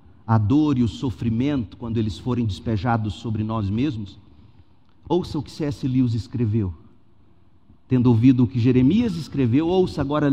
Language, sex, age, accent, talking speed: Portuguese, male, 50-69, Brazilian, 150 wpm